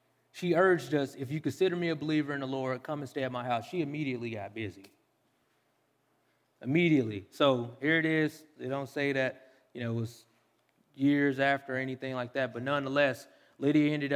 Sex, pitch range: male, 125-150 Hz